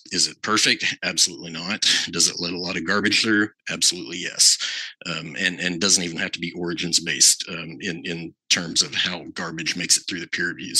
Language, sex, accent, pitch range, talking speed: English, male, American, 90-130 Hz, 200 wpm